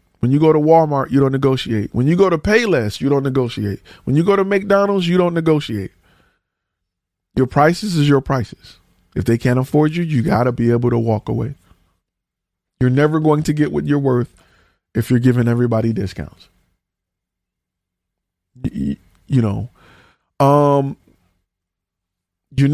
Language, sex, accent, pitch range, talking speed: English, male, American, 105-155 Hz, 155 wpm